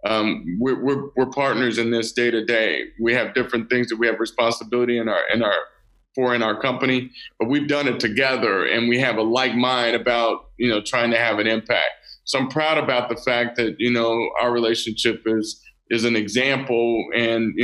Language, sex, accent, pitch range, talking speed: English, male, American, 115-130 Hz, 210 wpm